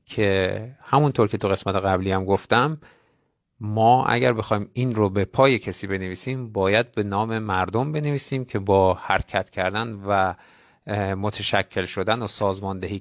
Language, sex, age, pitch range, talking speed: Persian, male, 50-69, 100-130 Hz, 145 wpm